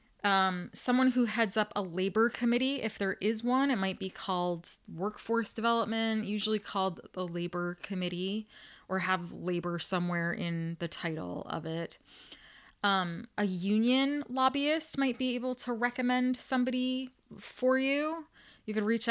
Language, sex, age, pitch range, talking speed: English, female, 20-39, 175-225 Hz, 145 wpm